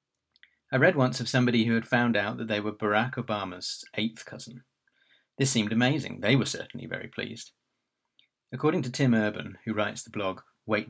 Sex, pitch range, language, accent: male, 105-120 Hz, English, British